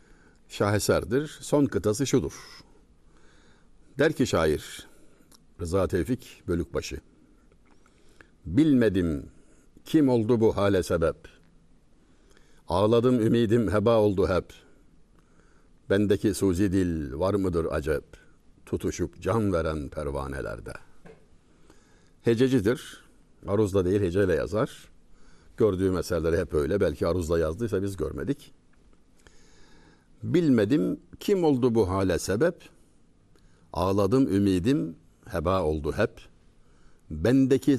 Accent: native